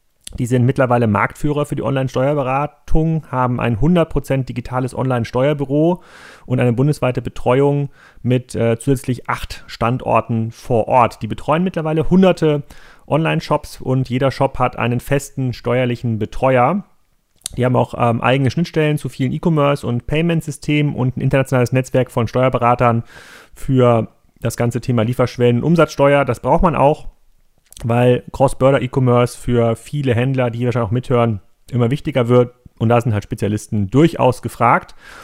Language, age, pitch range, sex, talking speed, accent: German, 30-49, 120-145 Hz, male, 150 wpm, German